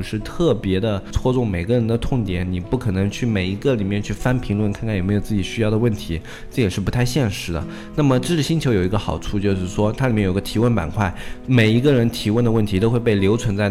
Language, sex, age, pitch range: Chinese, male, 20-39, 95-115 Hz